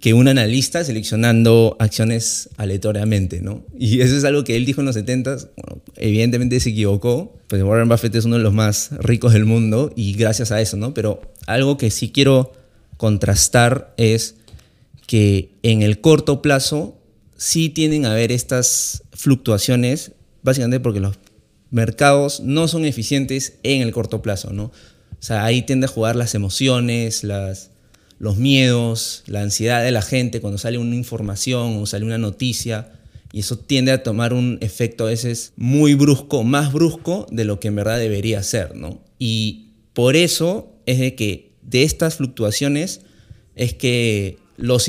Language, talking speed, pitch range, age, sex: Spanish, 165 wpm, 110-130 Hz, 20-39, male